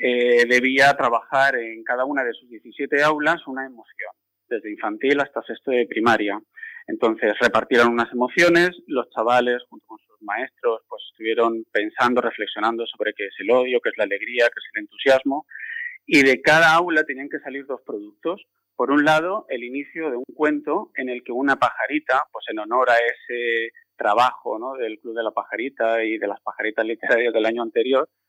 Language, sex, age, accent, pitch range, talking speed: English, male, 30-49, Spanish, 115-155 Hz, 185 wpm